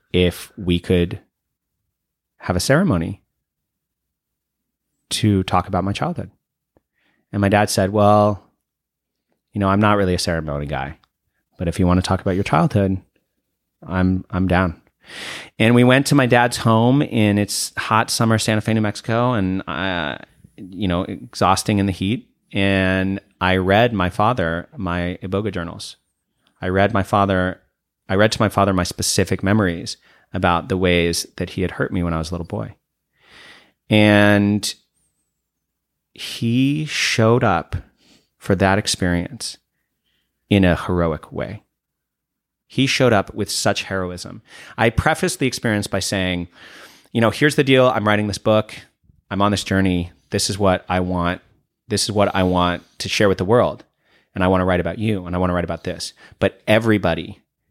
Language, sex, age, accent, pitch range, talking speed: English, male, 30-49, American, 90-105 Hz, 165 wpm